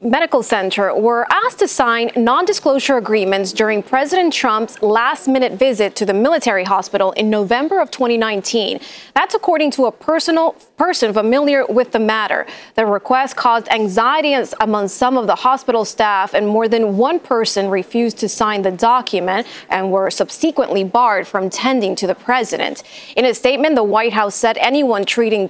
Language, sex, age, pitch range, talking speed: English, female, 20-39, 215-270 Hz, 160 wpm